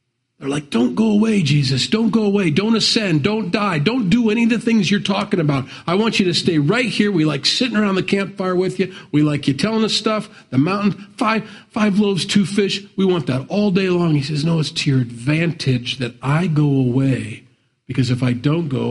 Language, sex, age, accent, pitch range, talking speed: English, male, 50-69, American, 130-200 Hz, 230 wpm